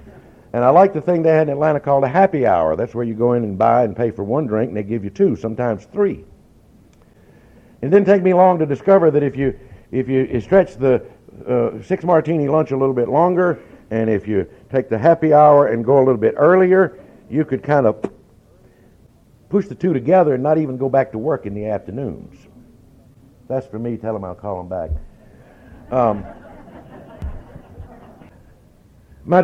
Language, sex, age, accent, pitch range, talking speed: English, male, 60-79, American, 105-145 Hz, 195 wpm